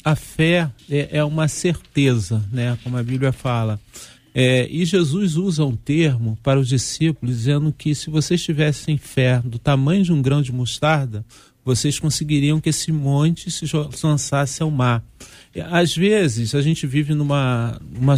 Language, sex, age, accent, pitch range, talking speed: Portuguese, male, 40-59, Brazilian, 130-165 Hz, 150 wpm